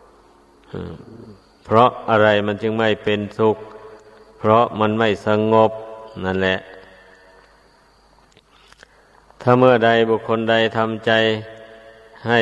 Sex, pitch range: male, 100-110 Hz